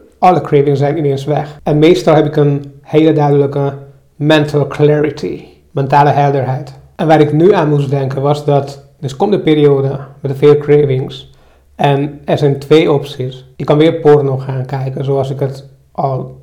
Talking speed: 170 wpm